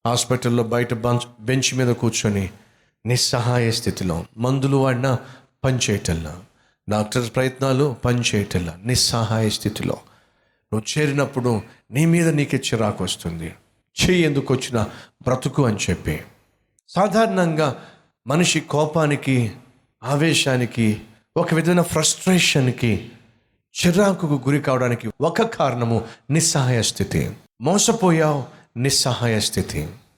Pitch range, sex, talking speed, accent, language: 115-155 Hz, male, 95 wpm, native, Telugu